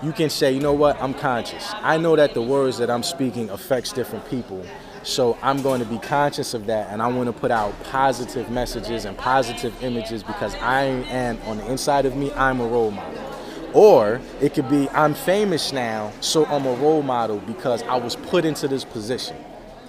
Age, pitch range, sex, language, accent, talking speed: 20-39, 120-150 Hz, male, English, American, 210 wpm